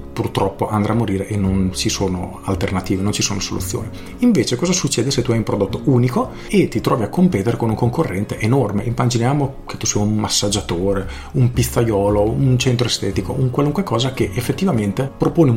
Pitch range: 100-125 Hz